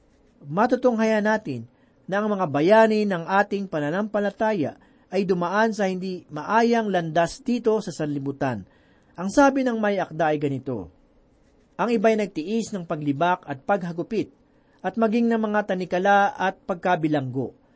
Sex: male